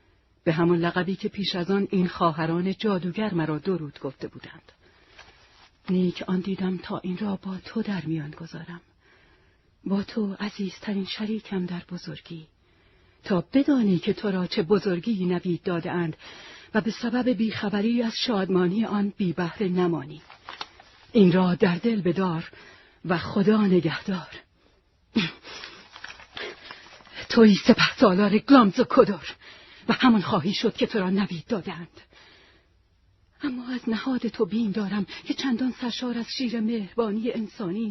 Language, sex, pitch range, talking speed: Persian, female, 180-230 Hz, 135 wpm